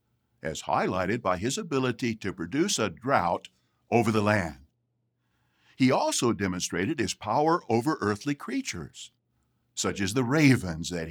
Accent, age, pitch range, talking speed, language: American, 60-79, 90-150 Hz, 135 wpm, English